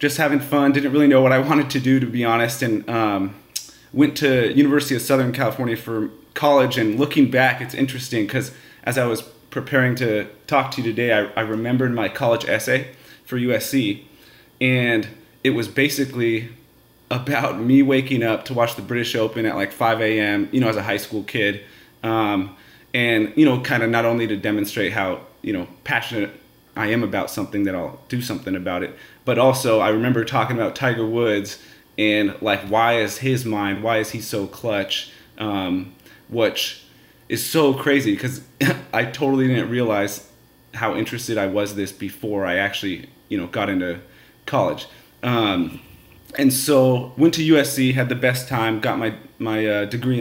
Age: 30-49